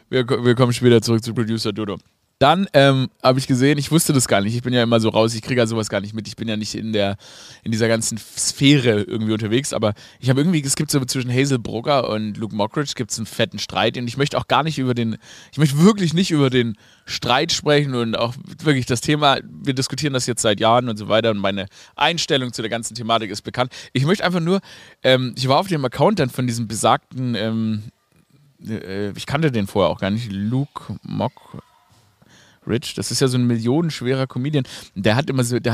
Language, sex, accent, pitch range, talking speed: German, male, German, 115-150 Hz, 220 wpm